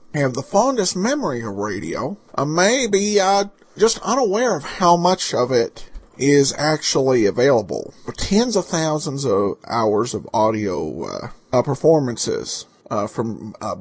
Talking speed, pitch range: 140 wpm, 125-175 Hz